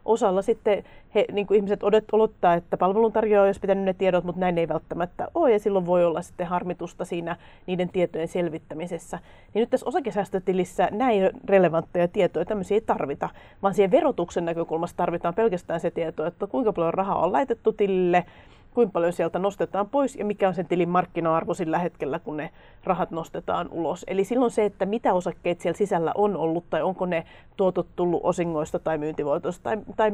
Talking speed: 175 wpm